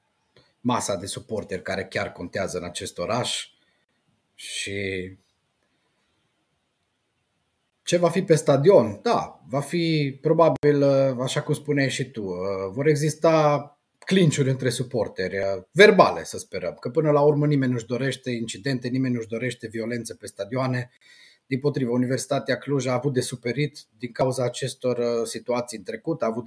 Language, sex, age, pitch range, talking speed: Romanian, male, 30-49, 120-150 Hz, 145 wpm